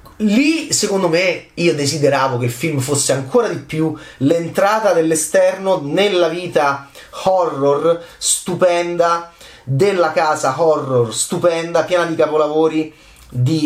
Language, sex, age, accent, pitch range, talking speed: Italian, male, 30-49, native, 135-180 Hz, 115 wpm